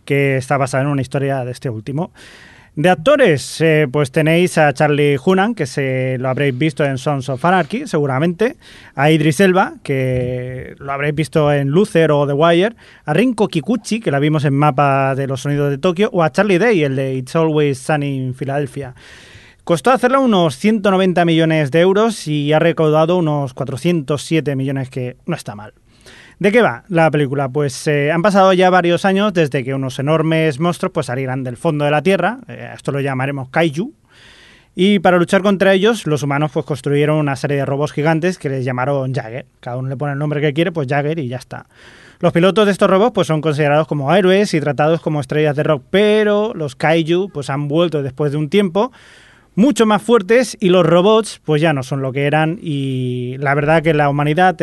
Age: 20-39